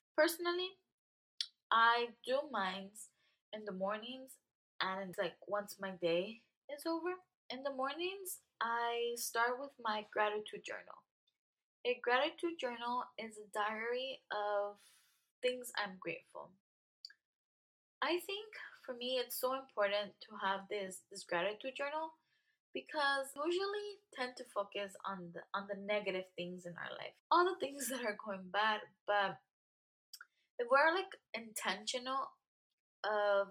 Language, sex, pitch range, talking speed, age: English, female, 195-255 Hz, 135 wpm, 10-29